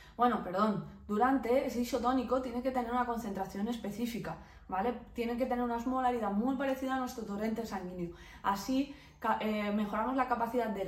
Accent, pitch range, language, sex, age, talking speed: Spanish, 210-260 Hz, Spanish, female, 20-39, 160 wpm